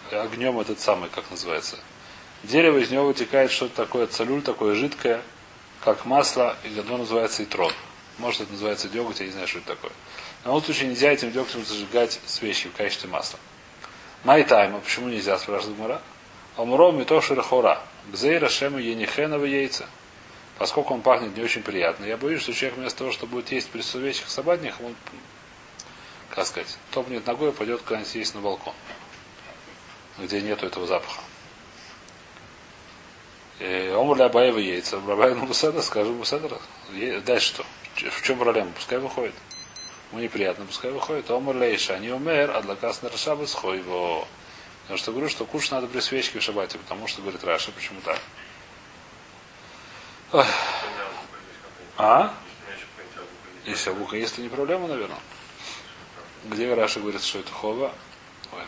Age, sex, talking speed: 30-49, male, 150 wpm